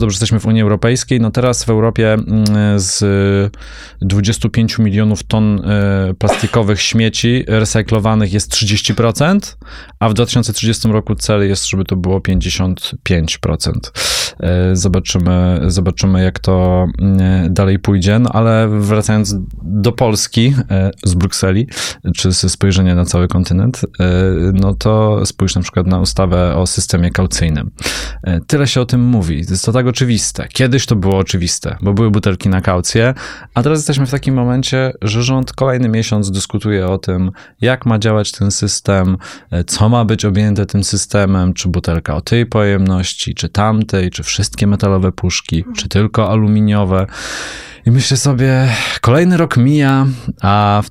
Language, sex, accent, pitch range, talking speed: Polish, male, native, 95-115 Hz, 145 wpm